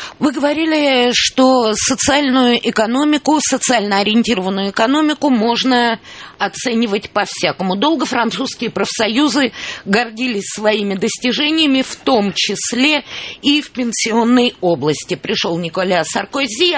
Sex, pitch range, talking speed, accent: female, 190-255 Hz, 95 wpm, native